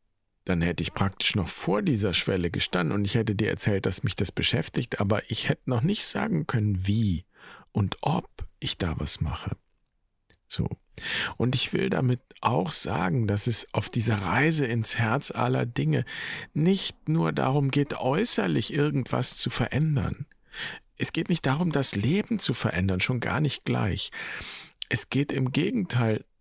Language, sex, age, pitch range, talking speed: German, male, 50-69, 100-140 Hz, 165 wpm